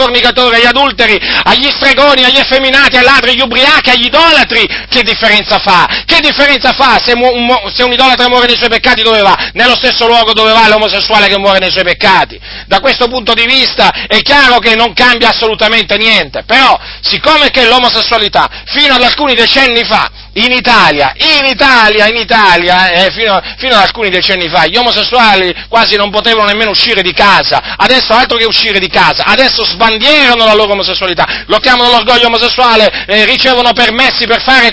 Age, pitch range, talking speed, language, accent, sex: 40-59, 220-265 Hz, 180 wpm, Italian, native, male